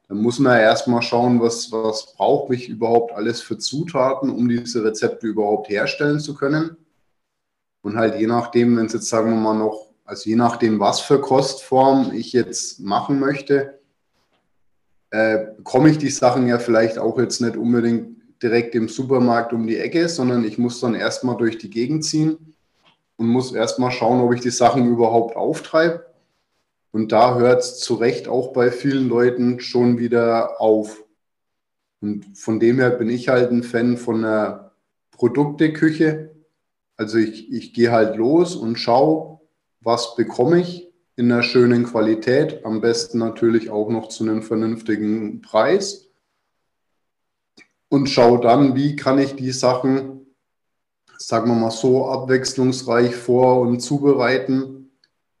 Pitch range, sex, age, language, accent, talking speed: 115-135 Hz, male, 20-39, German, German, 155 wpm